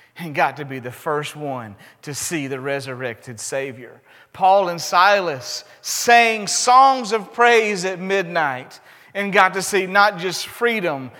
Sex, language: male, English